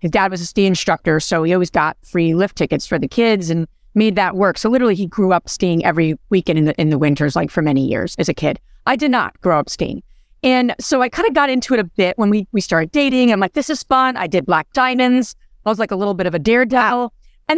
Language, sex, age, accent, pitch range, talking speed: English, female, 30-49, American, 175-255 Hz, 275 wpm